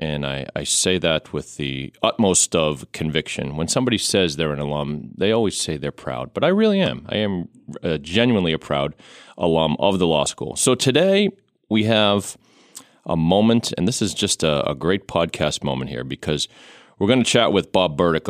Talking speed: 195 wpm